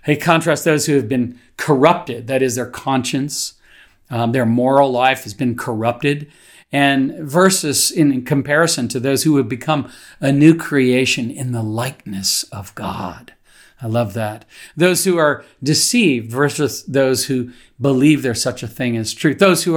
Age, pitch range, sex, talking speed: 40-59, 120-150 Hz, male, 165 wpm